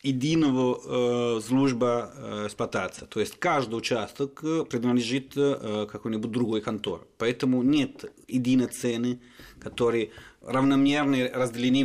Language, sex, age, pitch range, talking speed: Russian, male, 30-49, 110-130 Hz, 105 wpm